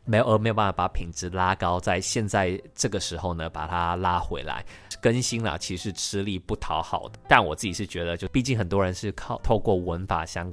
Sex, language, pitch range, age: male, Chinese, 85-100 Hz, 20-39